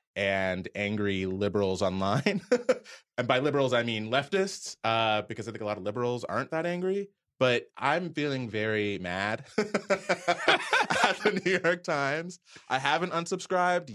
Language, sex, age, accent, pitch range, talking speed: English, male, 30-49, American, 95-125 Hz, 145 wpm